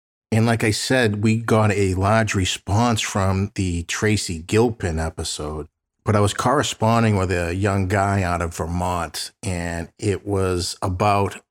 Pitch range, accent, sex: 85-105 Hz, American, male